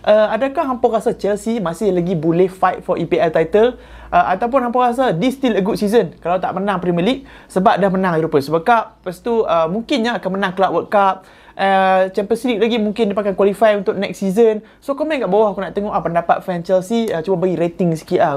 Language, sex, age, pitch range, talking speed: Malay, male, 20-39, 180-230 Hz, 215 wpm